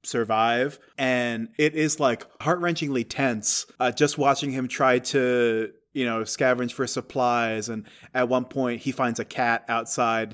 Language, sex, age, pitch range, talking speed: English, male, 20-39, 120-145 Hz, 155 wpm